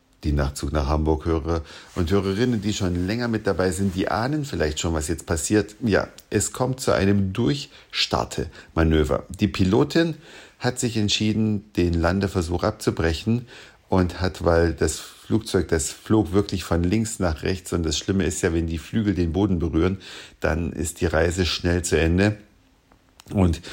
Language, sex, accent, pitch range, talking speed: German, male, German, 85-110 Hz, 165 wpm